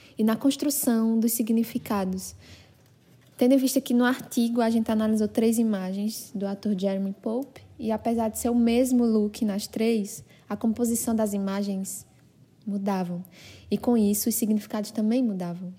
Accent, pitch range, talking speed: Brazilian, 200-230 Hz, 155 wpm